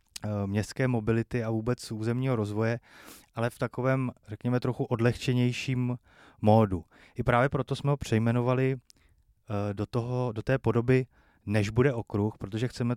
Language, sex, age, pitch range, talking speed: Czech, male, 30-49, 105-125 Hz, 130 wpm